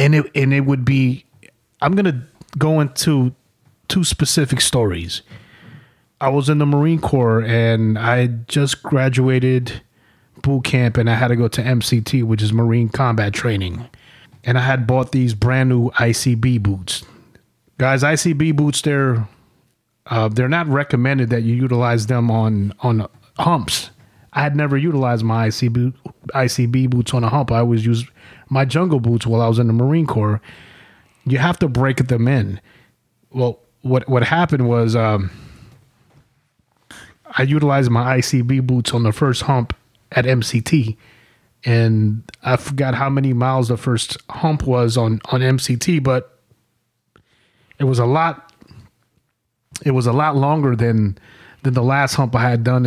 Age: 30-49